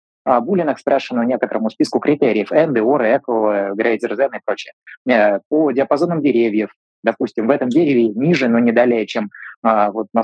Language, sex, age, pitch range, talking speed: Russian, male, 20-39, 110-135 Hz, 145 wpm